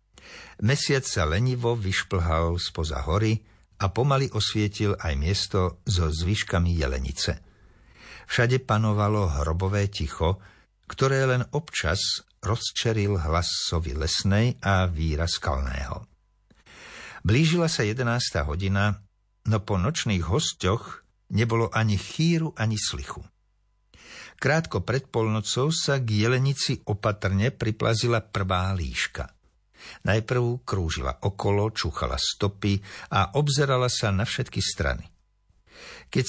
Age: 60-79